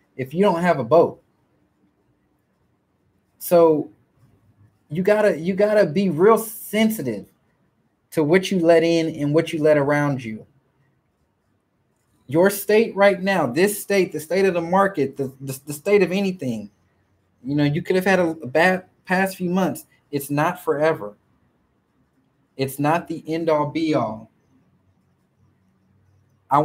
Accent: American